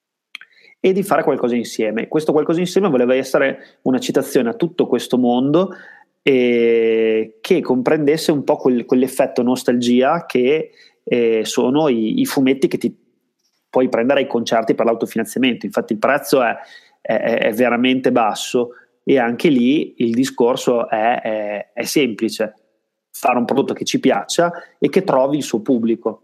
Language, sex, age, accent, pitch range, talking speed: Italian, male, 30-49, native, 115-135 Hz, 150 wpm